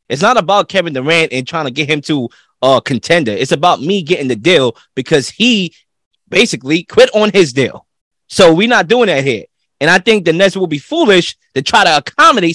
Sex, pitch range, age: male, 165-250 Hz, 20-39